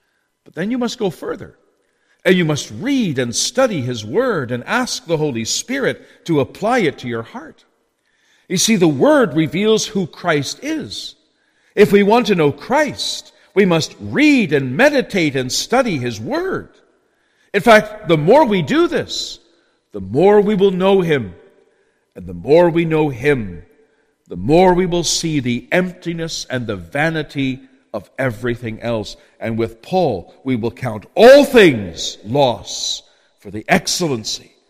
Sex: male